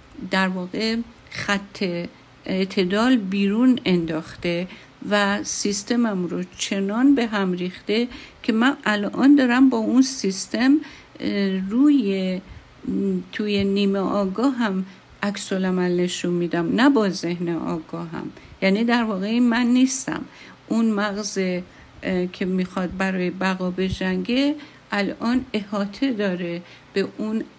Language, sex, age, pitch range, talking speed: Persian, female, 50-69, 185-230 Hz, 110 wpm